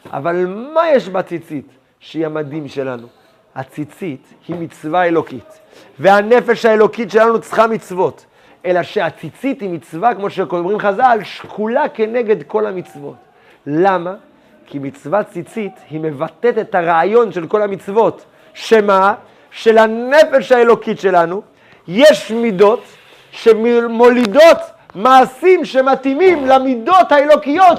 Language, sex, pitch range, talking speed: Hebrew, male, 200-290 Hz, 110 wpm